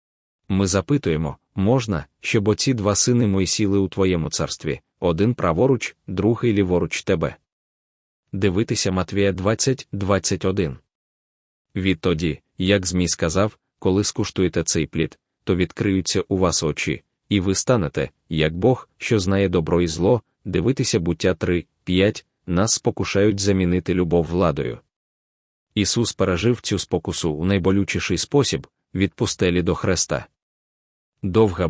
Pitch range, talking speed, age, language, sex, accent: 90-105 Hz, 125 wpm, 20-39, Ukrainian, male, native